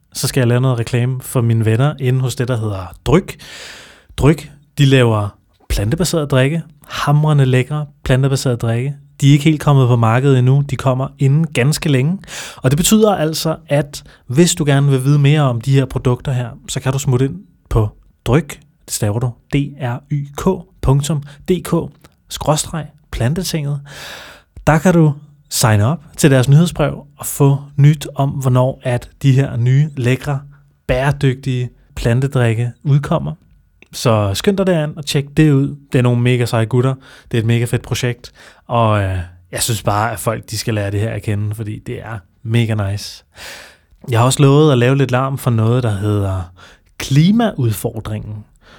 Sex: male